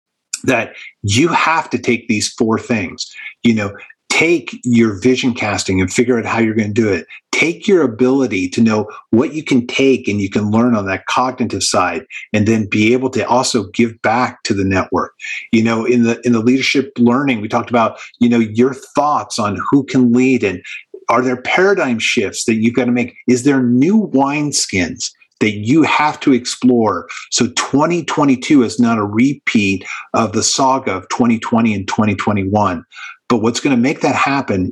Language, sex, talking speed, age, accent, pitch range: English, male, 190 wpm, 50-69, American, 105-130 Hz